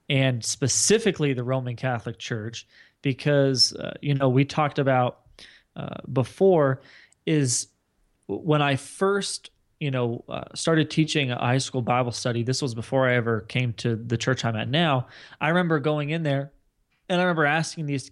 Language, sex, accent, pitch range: English, male, American, 130-160 Hz